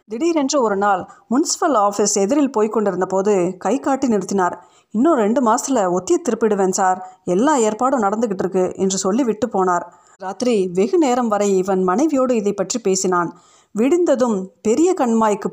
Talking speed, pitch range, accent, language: 140 wpm, 195-260 Hz, native, Tamil